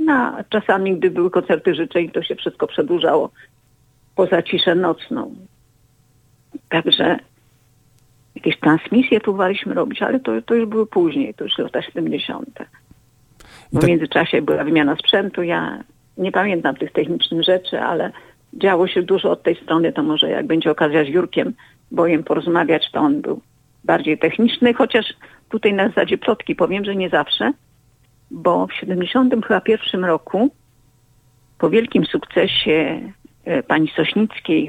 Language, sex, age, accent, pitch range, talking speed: Polish, female, 50-69, native, 155-230 Hz, 140 wpm